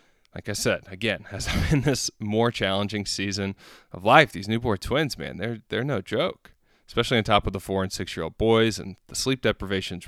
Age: 20-39